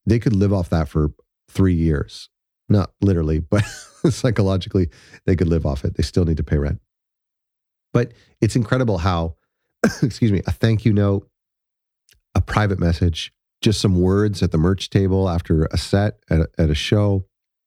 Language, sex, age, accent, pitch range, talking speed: English, male, 40-59, American, 85-105 Hz, 175 wpm